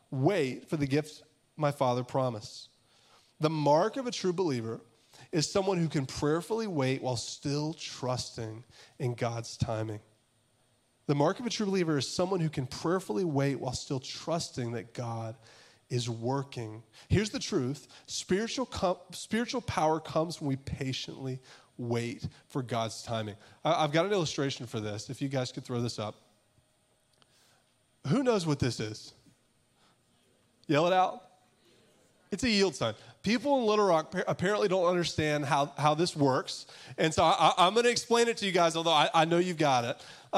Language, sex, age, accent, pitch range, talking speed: English, male, 30-49, American, 125-175 Hz, 170 wpm